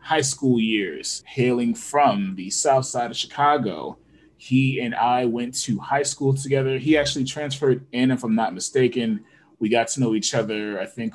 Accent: American